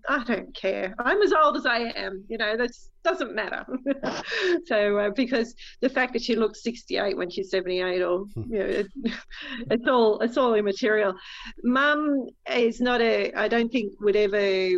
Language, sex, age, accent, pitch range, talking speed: English, female, 40-59, Australian, 205-275 Hz, 175 wpm